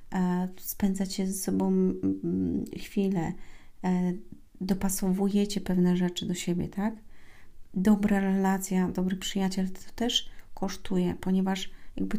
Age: 40-59